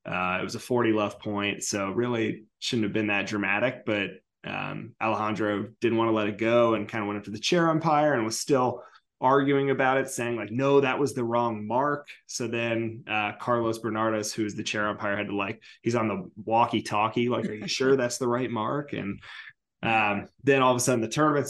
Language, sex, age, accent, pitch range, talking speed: English, male, 20-39, American, 105-125 Hz, 225 wpm